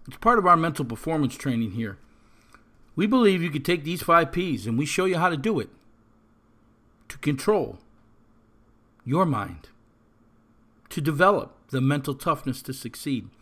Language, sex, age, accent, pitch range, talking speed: English, male, 50-69, American, 115-175 Hz, 155 wpm